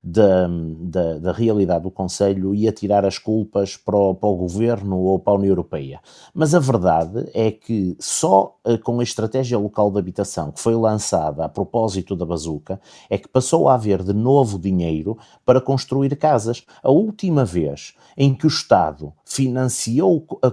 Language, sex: Portuguese, male